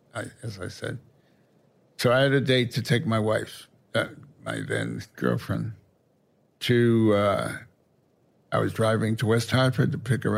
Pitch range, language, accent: 105-130 Hz, English, American